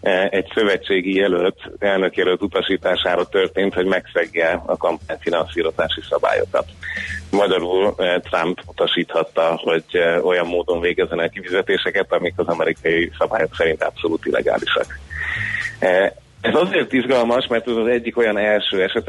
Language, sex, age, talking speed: Hungarian, male, 30-49, 115 wpm